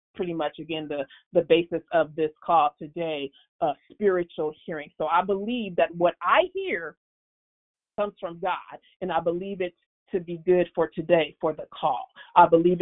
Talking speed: 175 wpm